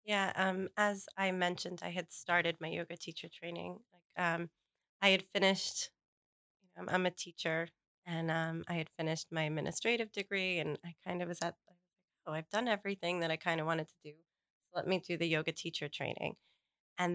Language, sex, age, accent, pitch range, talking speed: English, female, 20-39, American, 165-190 Hz, 200 wpm